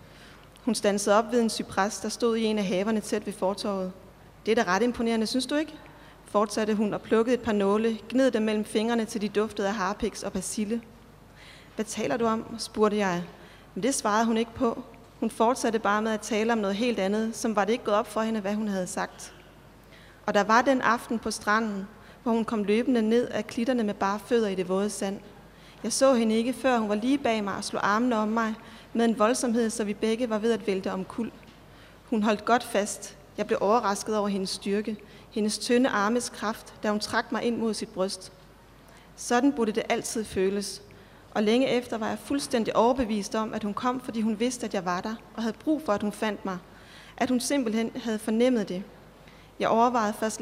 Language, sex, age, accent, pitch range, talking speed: Danish, female, 30-49, native, 205-235 Hz, 220 wpm